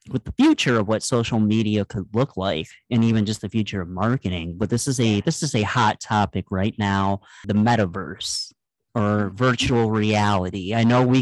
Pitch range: 95-115 Hz